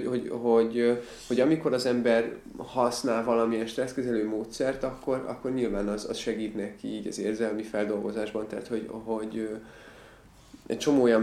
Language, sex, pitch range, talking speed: Hungarian, male, 105-120 Hz, 150 wpm